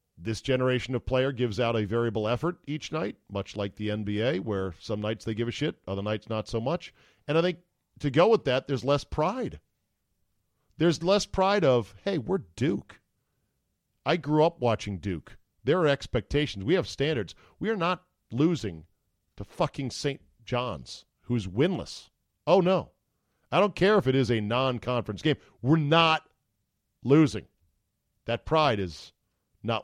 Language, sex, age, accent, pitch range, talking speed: English, male, 40-59, American, 105-140 Hz, 165 wpm